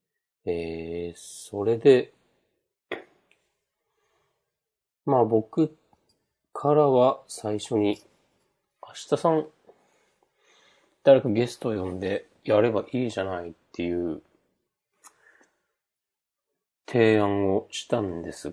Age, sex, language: 40-59, male, Japanese